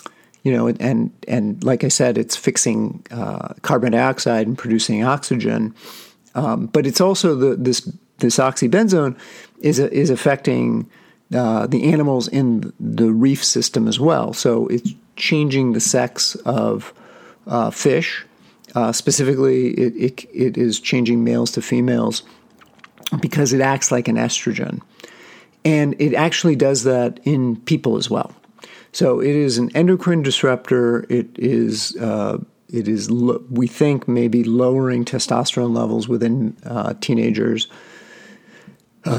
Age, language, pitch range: 50-69, English, 120-145 Hz